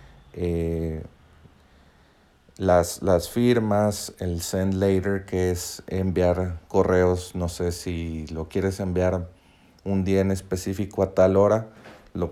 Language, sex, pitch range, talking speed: Spanish, male, 85-105 Hz, 120 wpm